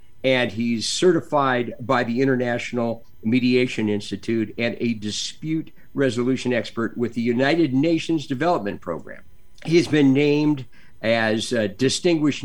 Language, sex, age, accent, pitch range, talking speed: English, male, 50-69, American, 115-155 Hz, 115 wpm